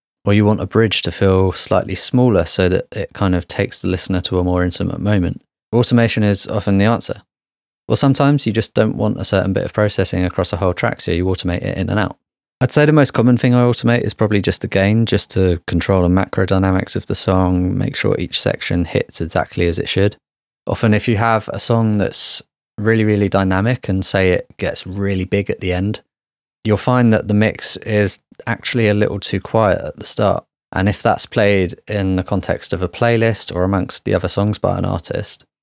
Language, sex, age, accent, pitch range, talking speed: English, male, 20-39, British, 95-110 Hz, 220 wpm